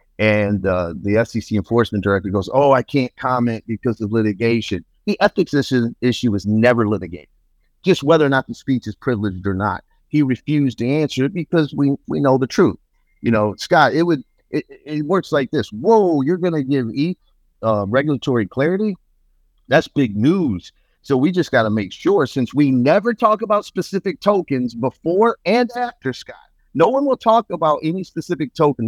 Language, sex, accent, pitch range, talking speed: English, male, American, 115-170 Hz, 185 wpm